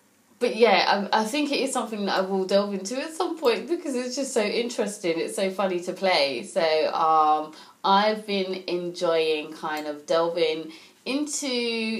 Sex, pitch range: female, 165-210 Hz